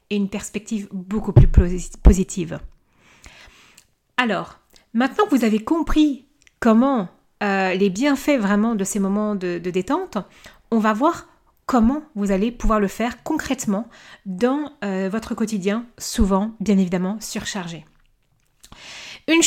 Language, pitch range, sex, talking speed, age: French, 200-260 Hz, female, 130 wpm, 40-59